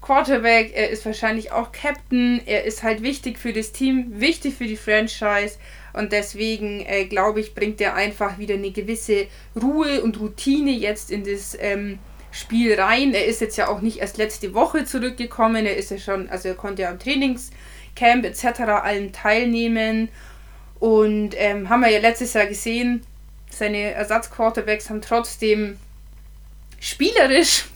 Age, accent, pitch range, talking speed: 20-39, German, 205-240 Hz, 160 wpm